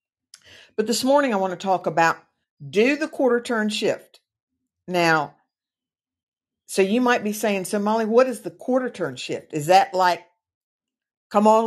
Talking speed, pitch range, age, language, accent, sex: 165 wpm, 155-215 Hz, 60-79, English, American, female